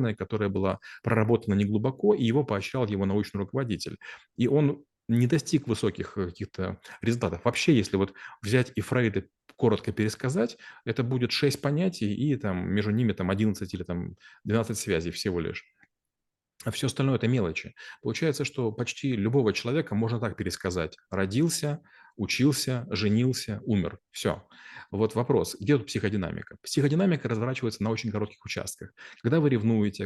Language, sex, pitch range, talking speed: Russian, male, 105-125 Hz, 145 wpm